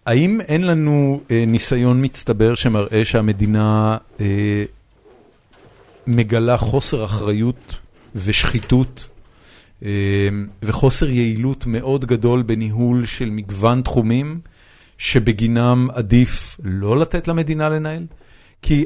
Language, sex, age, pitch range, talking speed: Hebrew, male, 40-59, 110-145 Hz, 90 wpm